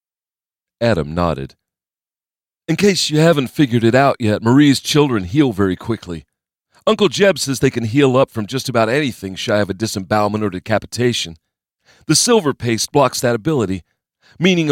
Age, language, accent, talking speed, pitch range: 40-59, English, American, 160 wpm, 95-140 Hz